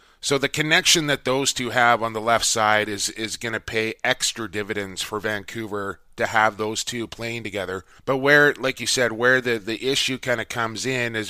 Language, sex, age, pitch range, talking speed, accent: English, male, 20-39, 110-125 Hz, 210 wpm, American